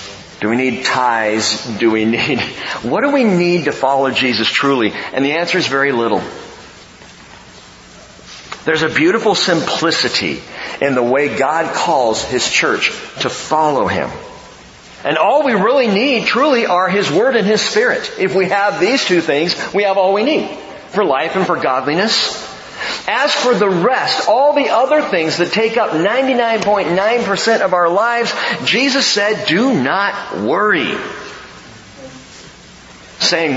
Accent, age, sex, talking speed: American, 50-69, male, 150 wpm